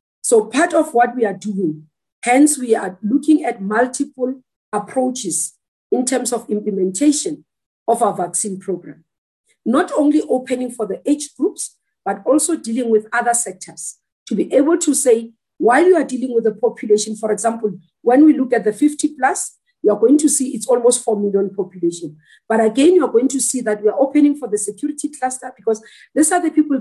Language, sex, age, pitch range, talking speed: English, female, 50-69, 210-290 Hz, 185 wpm